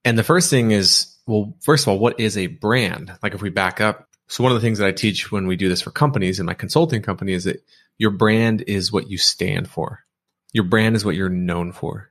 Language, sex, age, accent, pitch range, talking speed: English, male, 30-49, American, 95-115 Hz, 260 wpm